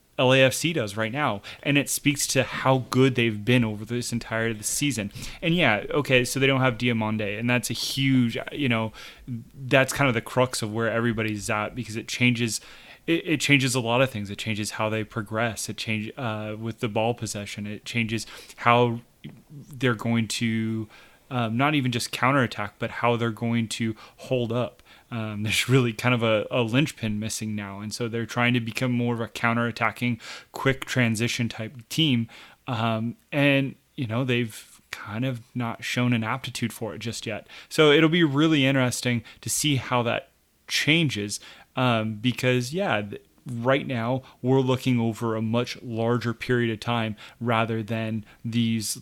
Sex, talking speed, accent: male, 180 wpm, American